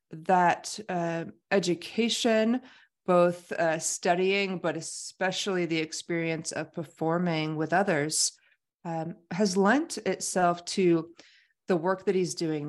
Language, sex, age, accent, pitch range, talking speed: English, female, 30-49, American, 160-190 Hz, 115 wpm